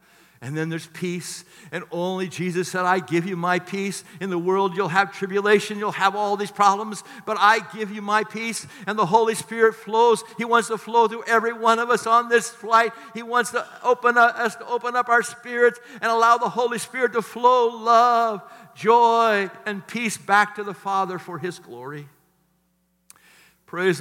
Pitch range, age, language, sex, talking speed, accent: 175-220 Hz, 60-79, English, male, 190 wpm, American